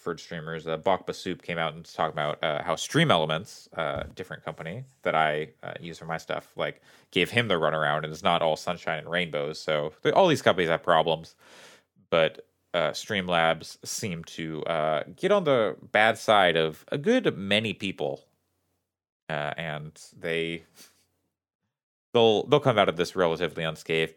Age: 30-49